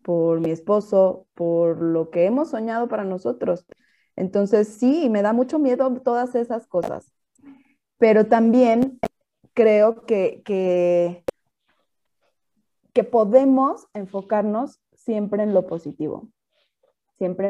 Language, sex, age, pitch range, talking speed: Spanish, female, 20-39, 185-235 Hz, 110 wpm